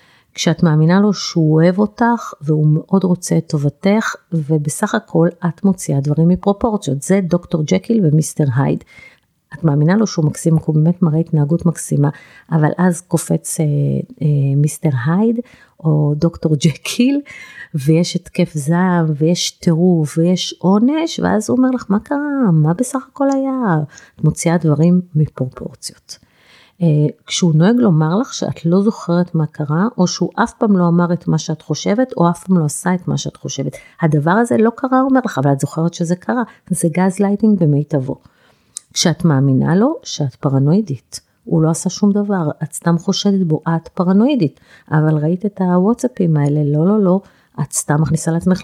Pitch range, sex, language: 155-200 Hz, female, Hebrew